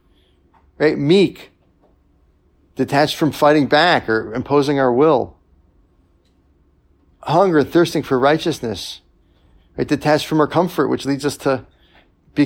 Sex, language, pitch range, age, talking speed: male, English, 85-135 Hz, 40-59, 115 wpm